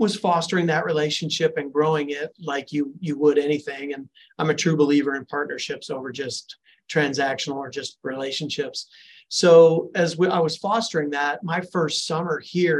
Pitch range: 145-165 Hz